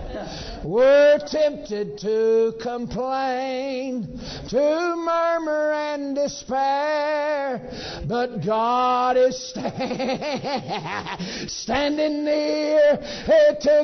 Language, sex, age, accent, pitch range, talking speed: English, male, 60-79, American, 260-355 Hz, 65 wpm